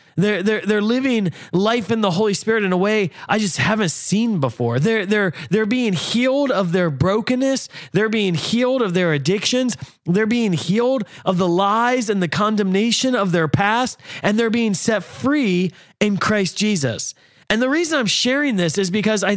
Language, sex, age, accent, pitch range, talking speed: English, male, 30-49, American, 165-215 Hz, 185 wpm